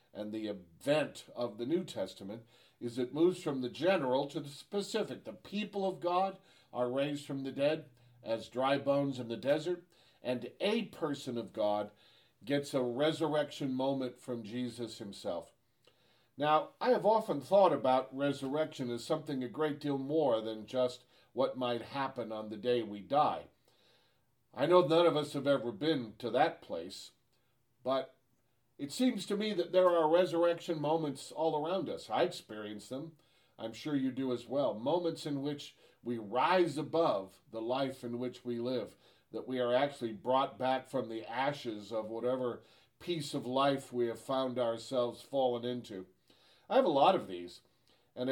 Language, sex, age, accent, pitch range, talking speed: English, male, 50-69, American, 120-155 Hz, 170 wpm